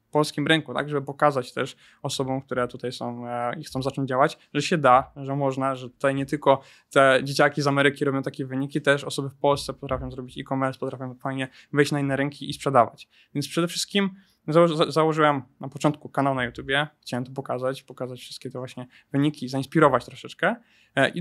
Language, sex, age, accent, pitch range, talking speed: Polish, male, 20-39, native, 130-150 Hz, 185 wpm